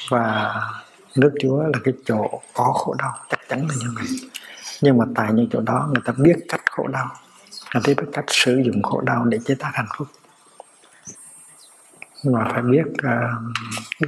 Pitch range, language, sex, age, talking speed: 120-145 Hz, Vietnamese, male, 60-79, 185 wpm